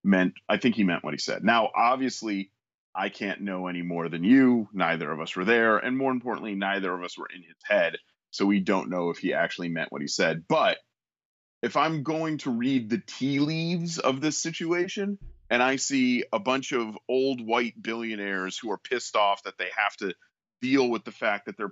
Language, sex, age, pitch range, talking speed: English, male, 30-49, 105-165 Hz, 215 wpm